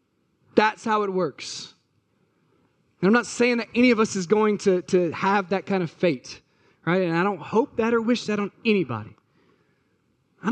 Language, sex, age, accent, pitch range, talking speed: English, male, 30-49, American, 140-185 Hz, 190 wpm